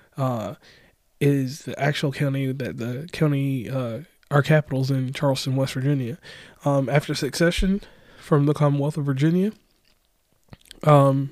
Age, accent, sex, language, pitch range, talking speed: 20-39, American, male, English, 135-155 Hz, 125 wpm